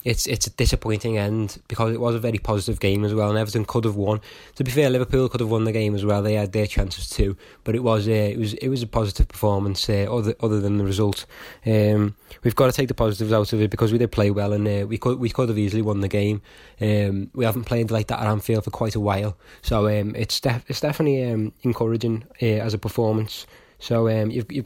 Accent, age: British, 20-39